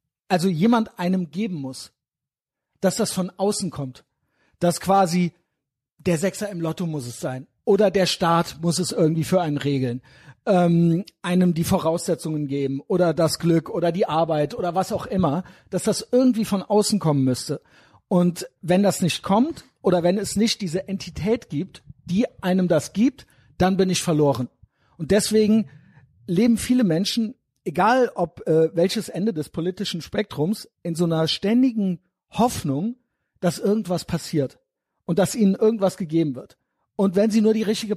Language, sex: German, male